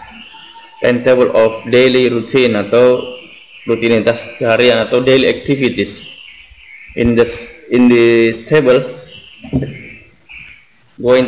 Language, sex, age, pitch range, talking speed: Indonesian, male, 20-39, 115-130 Hz, 90 wpm